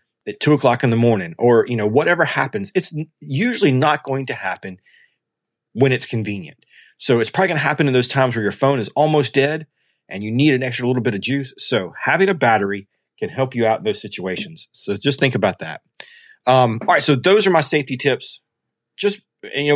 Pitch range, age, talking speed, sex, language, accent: 110-145 Hz, 40-59, 215 wpm, male, English, American